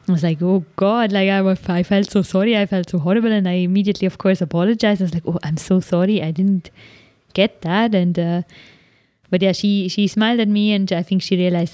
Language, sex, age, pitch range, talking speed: English, female, 20-39, 165-195 Hz, 240 wpm